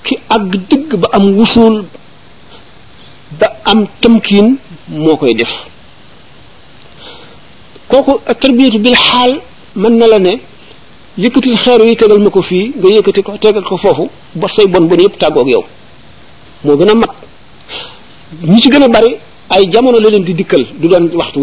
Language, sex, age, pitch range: French, male, 50-69, 180-230 Hz